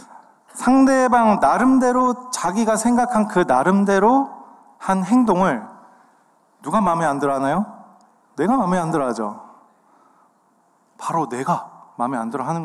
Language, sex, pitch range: Korean, male, 160-245 Hz